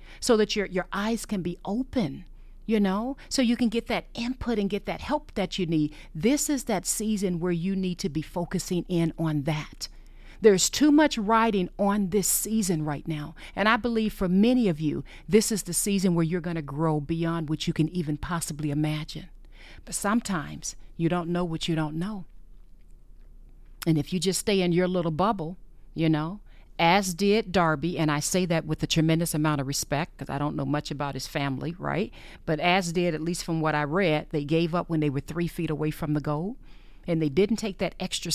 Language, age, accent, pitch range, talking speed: English, 40-59, American, 155-195 Hz, 215 wpm